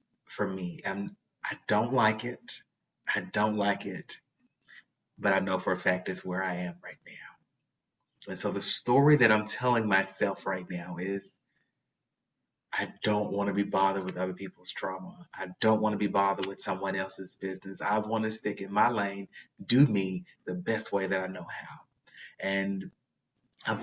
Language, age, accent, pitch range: English, 30-49, American, 95-110 Hz